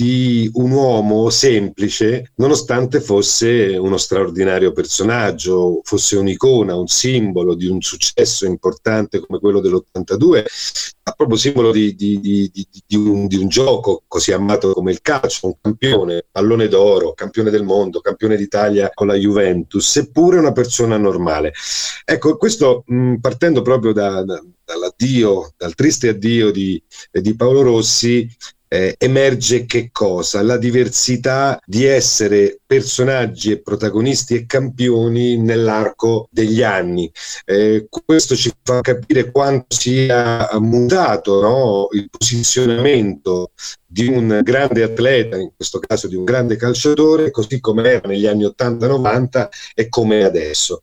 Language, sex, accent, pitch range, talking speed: Italian, male, native, 100-125 Hz, 125 wpm